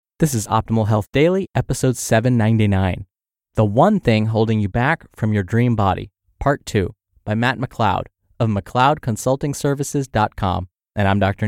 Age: 20-39